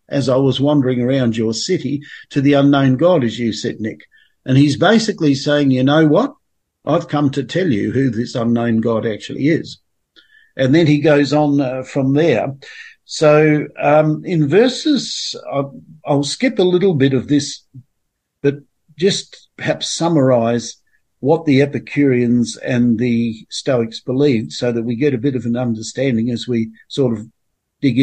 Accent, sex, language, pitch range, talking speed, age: Australian, male, English, 120-150 Hz, 165 wpm, 50-69